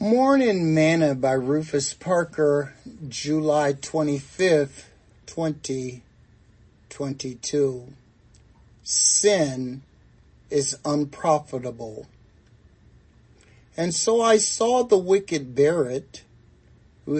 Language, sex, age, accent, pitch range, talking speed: English, male, 50-69, American, 130-160 Hz, 70 wpm